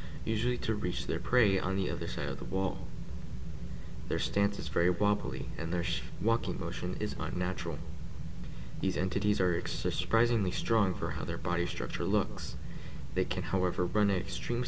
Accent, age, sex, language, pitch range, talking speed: American, 20-39, male, English, 80-105 Hz, 165 wpm